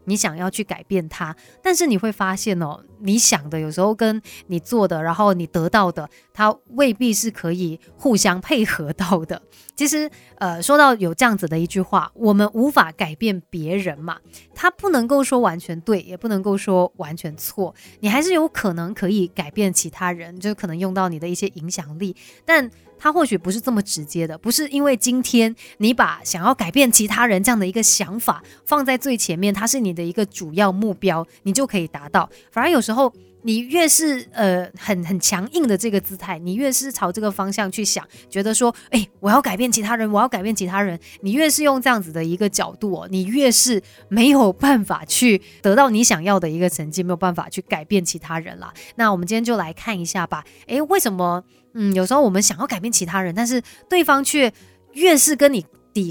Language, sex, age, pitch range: Chinese, female, 20-39, 180-245 Hz